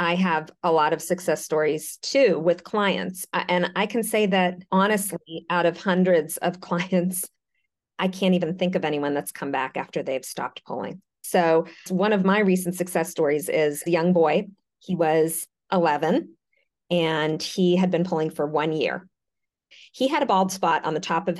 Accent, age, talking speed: American, 40-59, 180 wpm